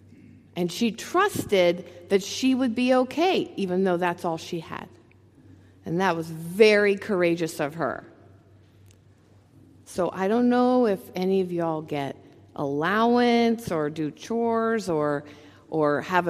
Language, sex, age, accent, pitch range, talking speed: English, female, 50-69, American, 115-190 Hz, 140 wpm